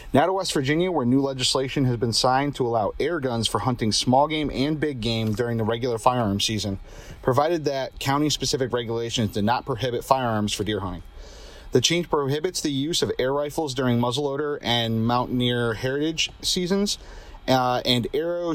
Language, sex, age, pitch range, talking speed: English, male, 30-49, 115-145 Hz, 175 wpm